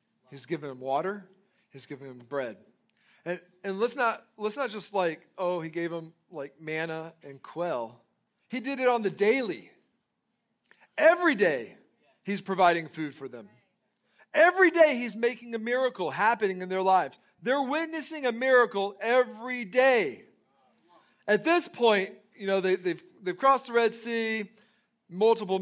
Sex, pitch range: male, 160-225 Hz